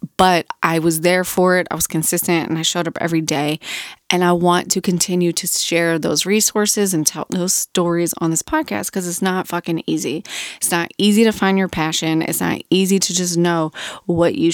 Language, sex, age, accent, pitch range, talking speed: English, female, 20-39, American, 170-200 Hz, 210 wpm